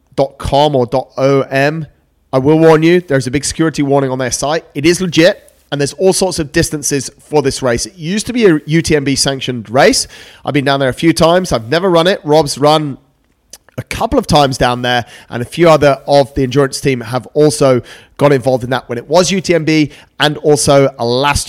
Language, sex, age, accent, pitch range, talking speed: English, male, 30-49, British, 125-160 Hz, 210 wpm